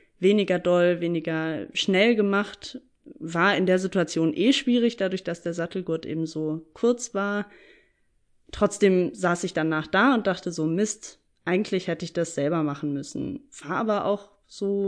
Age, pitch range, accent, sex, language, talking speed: 20-39, 175-220 Hz, German, female, German, 155 wpm